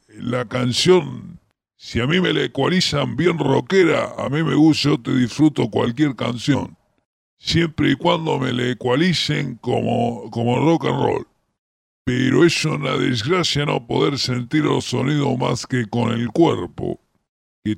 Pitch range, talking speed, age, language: 125-155 Hz, 155 wpm, 50-69, English